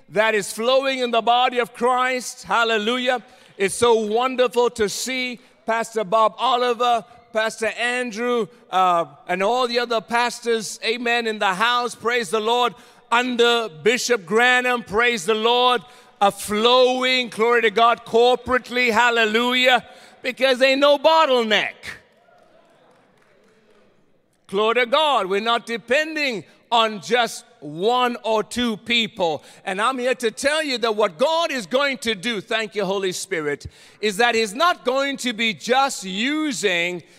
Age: 50-69